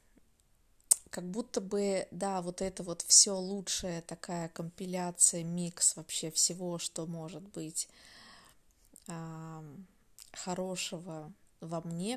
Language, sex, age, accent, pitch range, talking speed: Russian, female, 20-39, native, 175-200 Hz, 105 wpm